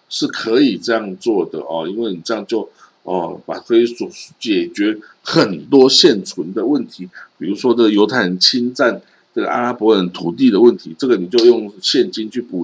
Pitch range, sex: 100-135 Hz, male